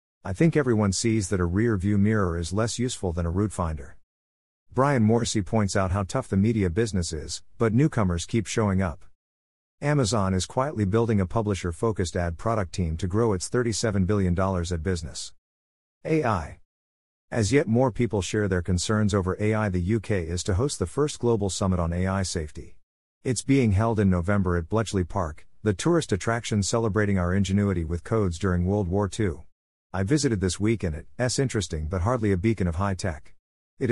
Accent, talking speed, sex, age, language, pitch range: American, 180 wpm, male, 50-69, English, 90-110 Hz